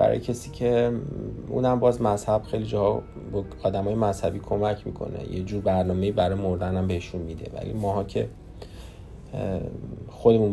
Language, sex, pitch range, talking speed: Persian, male, 90-105 Hz, 140 wpm